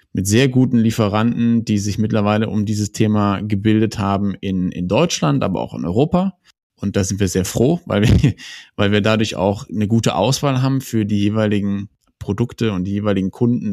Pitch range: 100-125 Hz